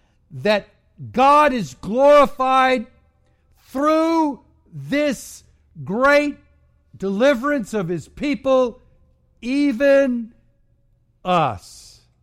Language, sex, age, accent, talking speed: English, male, 60-79, American, 65 wpm